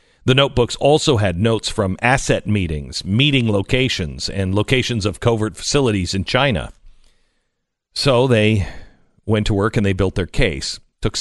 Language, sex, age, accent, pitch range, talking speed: English, male, 50-69, American, 95-125 Hz, 150 wpm